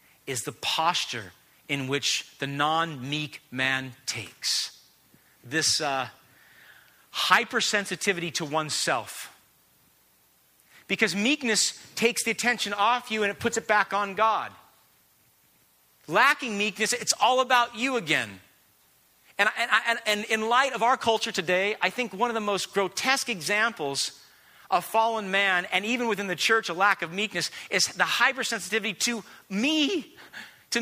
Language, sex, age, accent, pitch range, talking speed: English, male, 40-59, American, 180-245 Hz, 140 wpm